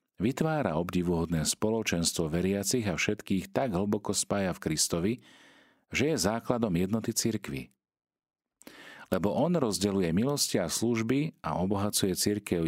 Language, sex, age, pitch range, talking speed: Slovak, male, 40-59, 85-115 Hz, 120 wpm